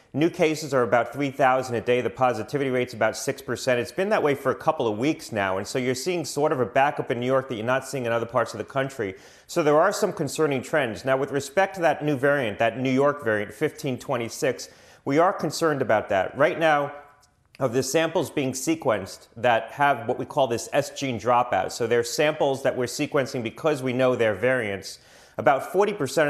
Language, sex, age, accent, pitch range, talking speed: English, male, 30-49, American, 120-150 Hz, 220 wpm